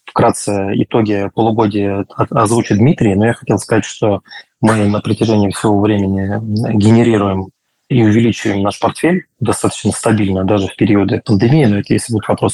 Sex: male